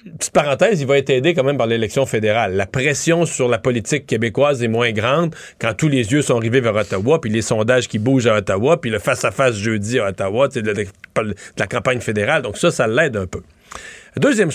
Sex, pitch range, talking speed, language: male, 115-145 Hz, 215 wpm, French